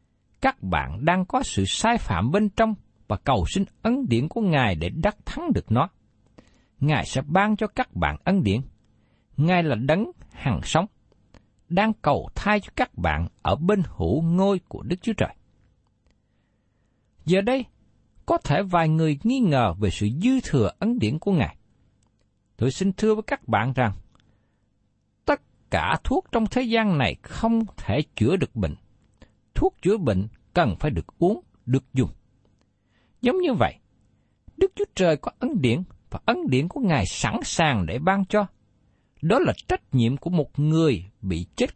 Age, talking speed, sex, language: 60-79, 170 wpm, male, Vietnamese